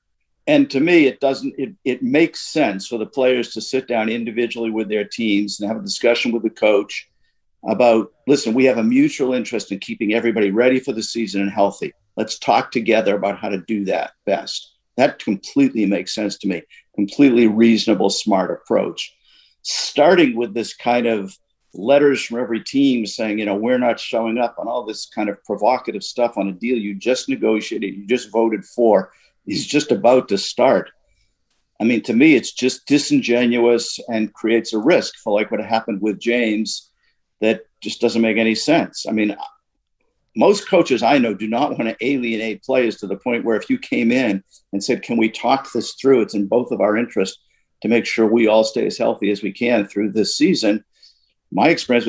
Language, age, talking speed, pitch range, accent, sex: English, 50-69, 195 wpm, 110-130 Hz, American, male